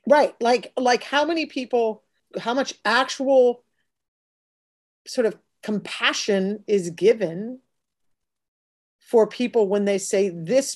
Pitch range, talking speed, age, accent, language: 185-235 Hz, 110 wpm, 40-59, American, English